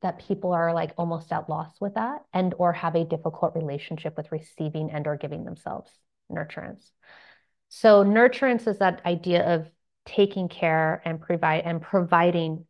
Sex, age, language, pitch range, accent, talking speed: female, 30-49, English, 160-195 Hz, American, 155 wpm